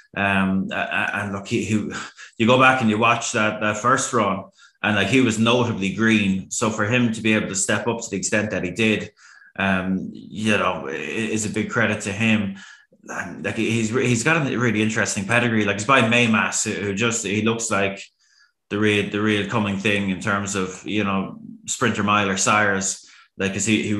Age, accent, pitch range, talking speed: 20-39, Irish, 100-115 Hz, 200 wpm